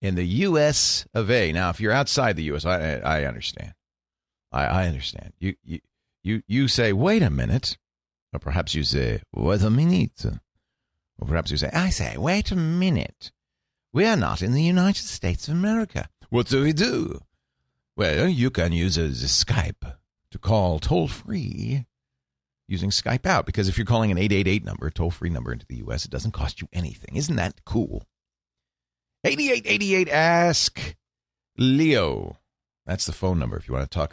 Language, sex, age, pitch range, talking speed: English, male, 50-69, 80-125 Hz, 175 wpm